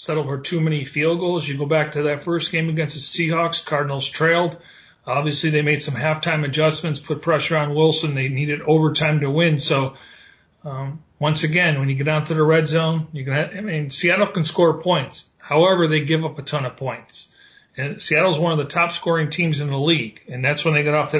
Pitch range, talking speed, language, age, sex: 145-165 Hz, 225 wpm, English, 40-59, male